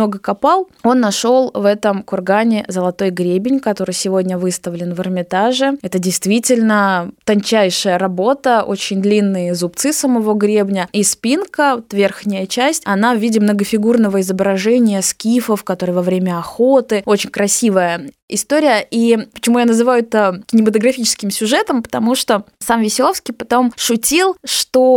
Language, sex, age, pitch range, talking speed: Russian, female, 20-39, 195-245 Hz, 130 wpm